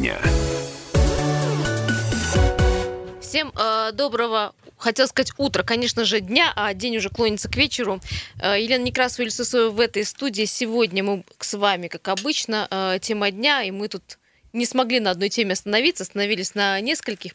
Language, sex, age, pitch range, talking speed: Russian, female, 20-39, 175-225 Hz, 145 wpm